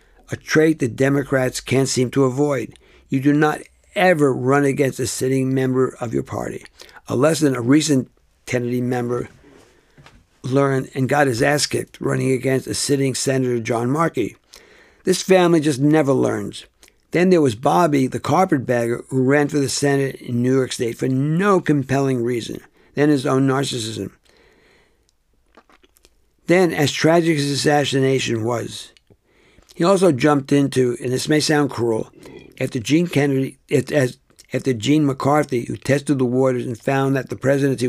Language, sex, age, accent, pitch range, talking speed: English, male, 60-79, American, 125-145 Hz, 155 wpm